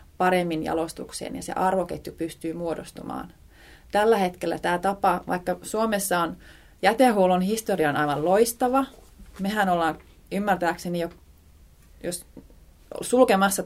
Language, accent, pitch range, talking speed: Finnish, native, 155-185 Hz, 105 wpm